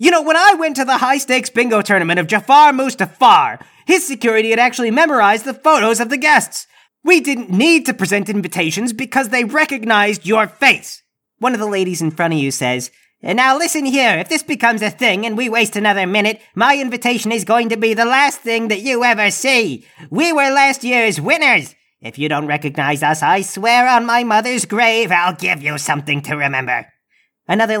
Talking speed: 200 wpm